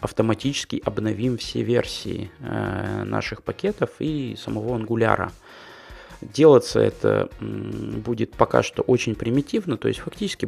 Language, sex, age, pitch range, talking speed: Russian, male, 20-39, 105-125 Hz, 110 wpm